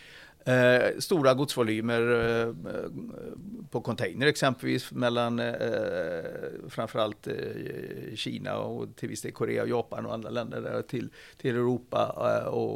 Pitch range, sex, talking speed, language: 115-170 Hz, male, 105 wpm, Swedish